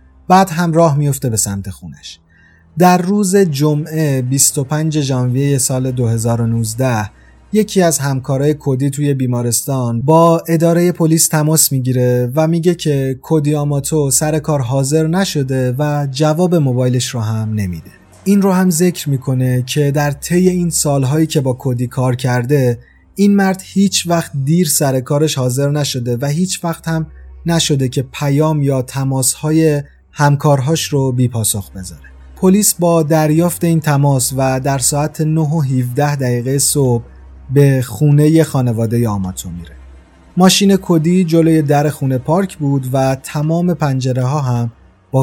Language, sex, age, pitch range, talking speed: Persian, male, 30-49, 125-160 Hz, 140 wpm